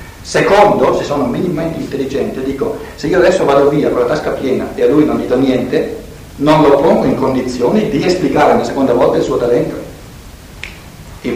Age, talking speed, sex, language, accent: 60-79, 190 wpm, male, Italian, native